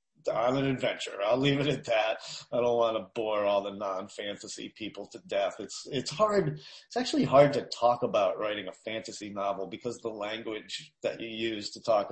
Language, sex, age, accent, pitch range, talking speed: English, male, 30-49, American, 110-150 Hz, 205 wpm